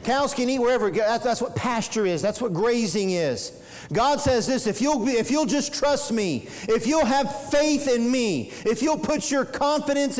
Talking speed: 190 wpm